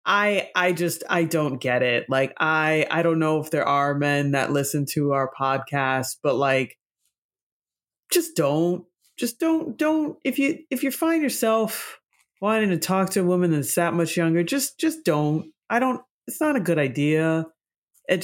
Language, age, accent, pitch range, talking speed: English, 30-49, American, 155-255 Hz, 185 wpm